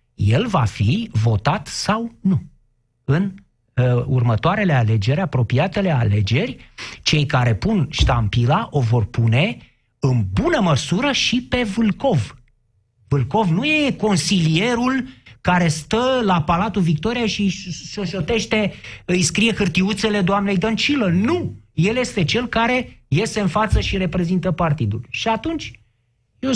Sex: male